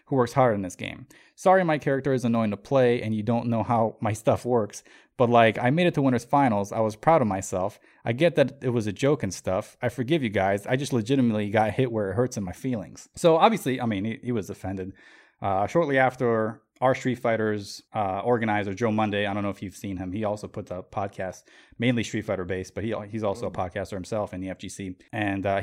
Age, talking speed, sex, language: 20-39, 245 wpm, male, English